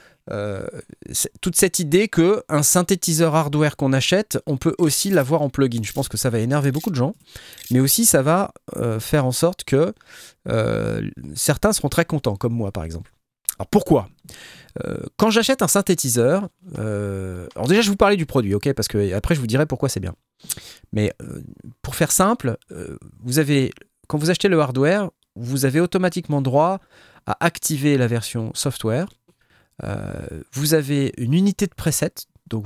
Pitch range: 110-160 Hz